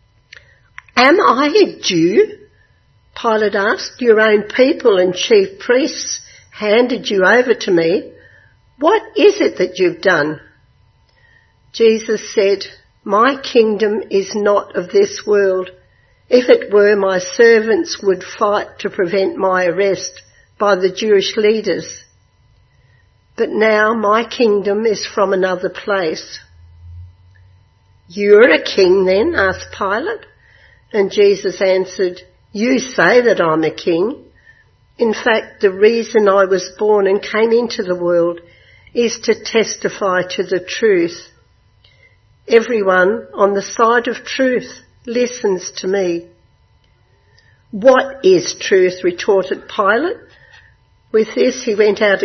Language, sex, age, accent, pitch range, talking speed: English, female, 60-79, Australian, 185-245 Hz, 125 wpm